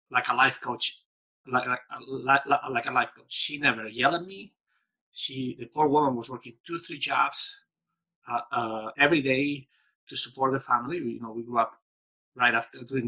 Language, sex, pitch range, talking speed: English, male, 115-145 Hz, 185 wpm